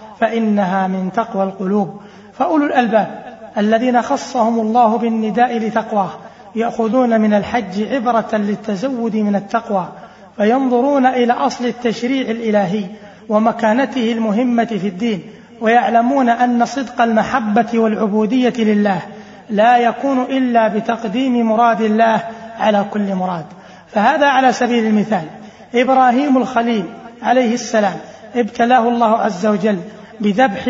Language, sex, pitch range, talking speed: Arabic, male, 210-245 Hz, 110 wpm